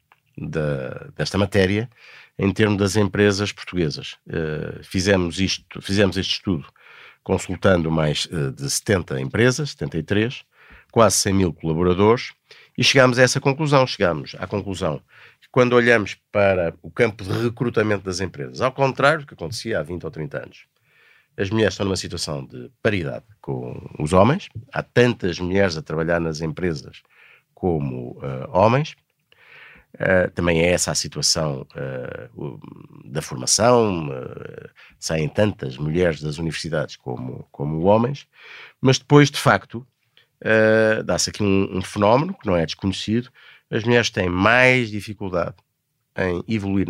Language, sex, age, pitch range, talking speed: Portuguese, male, 50-69, 85-115 Hz, 135 wpm